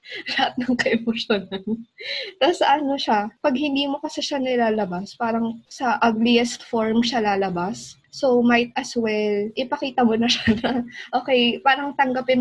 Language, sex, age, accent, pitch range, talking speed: English, female, 20-39, Filipino, 210-250 Hz, 140 wpm